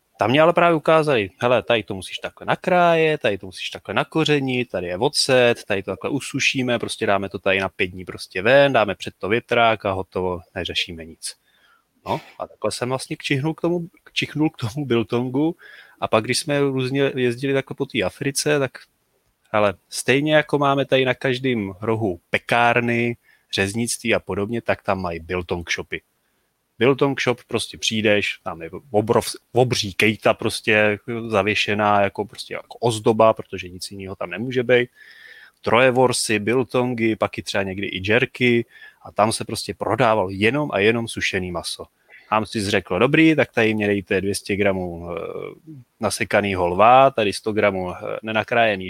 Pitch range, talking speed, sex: 100-130 Hz, 165 wpm, male